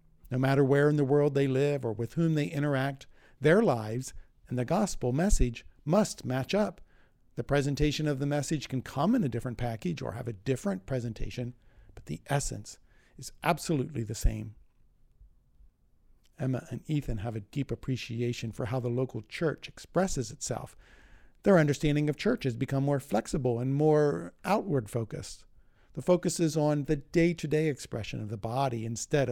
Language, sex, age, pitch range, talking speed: English, male, 50-69, 120-150 Hz, 165 wpm